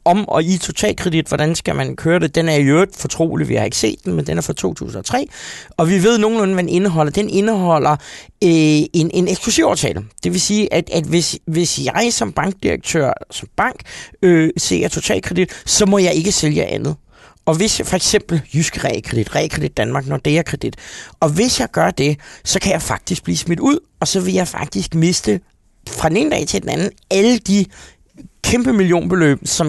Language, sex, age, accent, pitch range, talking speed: Danish, male, 30-49, native, 150-195 Hz, 195 wpm